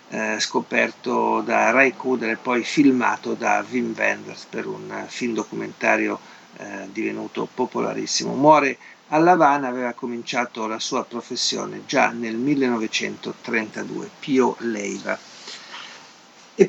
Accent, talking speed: native, 110 wpm